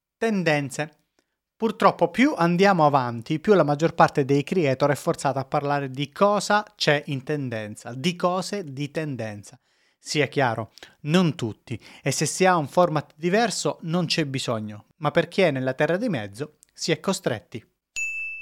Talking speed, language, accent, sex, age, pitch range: 160 wpm, Italian, native, male, 30-49, 130-180 Hz